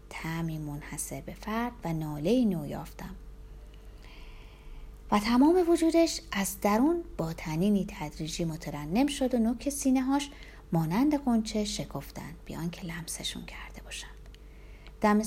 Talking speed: 120 wpm